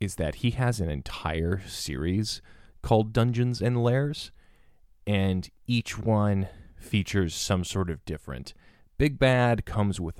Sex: male